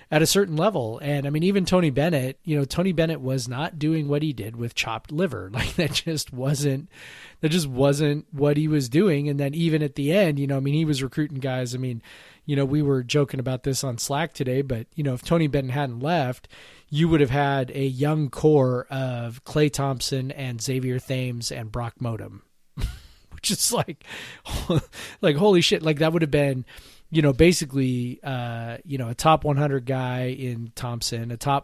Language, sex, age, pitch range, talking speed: English, male, 30-49, 125-155 Hz, 205 wpm